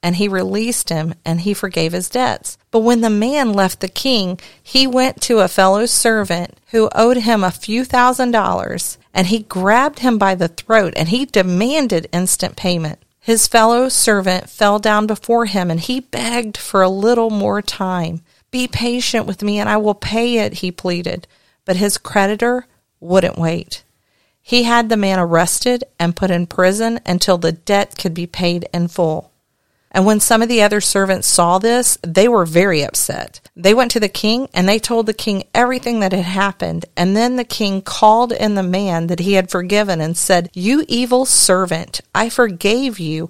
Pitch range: 180-230 Hz